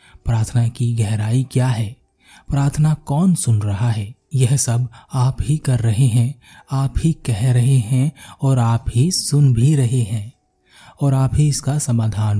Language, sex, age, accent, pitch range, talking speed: Hindi, male, 30-49, native, 115-135 Hz, 165 wpm